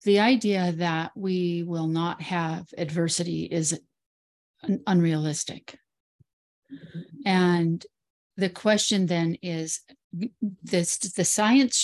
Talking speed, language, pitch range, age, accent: 90 wpm, English, 165-200 Hz, 40-59, American